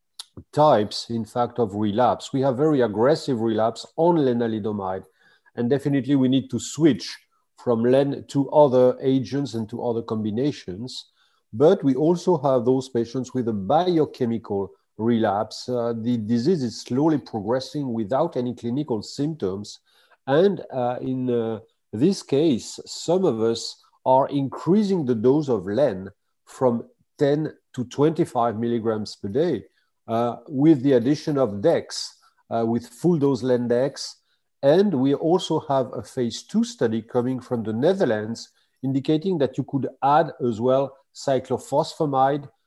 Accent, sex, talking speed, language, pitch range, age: French, male, 140 wpm, English, 120-145 Hz, 40-59